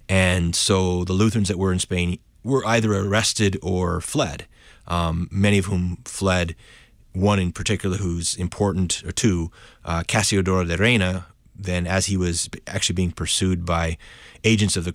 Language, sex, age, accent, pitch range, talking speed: English, male, 30-49, American, 85-100 Hz, 160 wpm